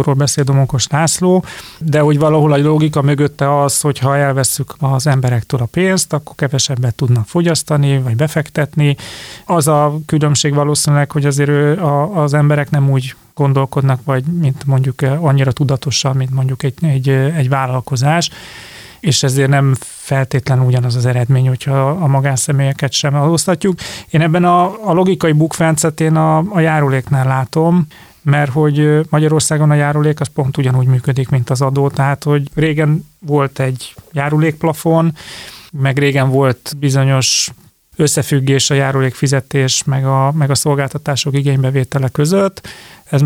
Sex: male